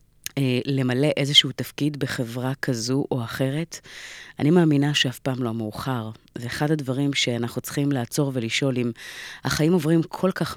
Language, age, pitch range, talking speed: Hebrew, 30-49, 120-145 Hz, 150 wpm